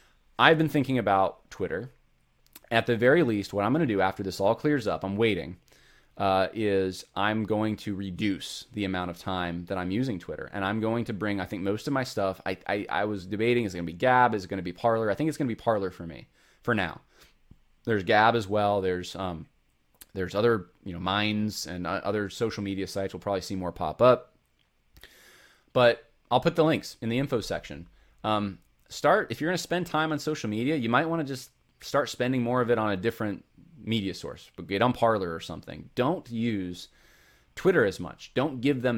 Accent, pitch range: American, 95-120 Hz